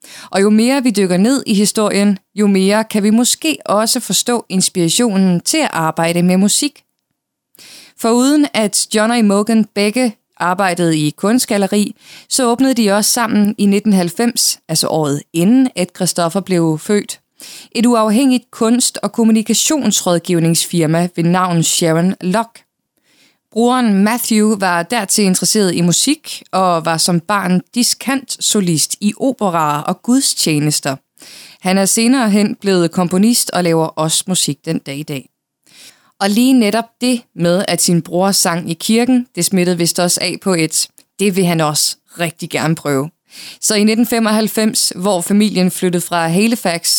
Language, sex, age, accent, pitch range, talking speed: Danish, female, 20-39, native, 175-230 Hz, 150 wpm